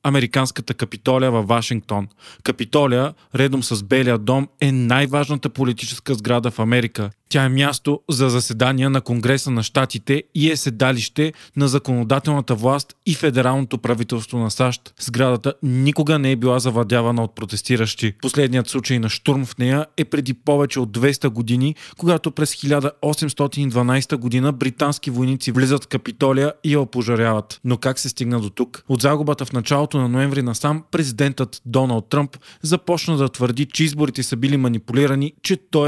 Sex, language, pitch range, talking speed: male, Bulgarian, 125-145 Hz, 155 wpm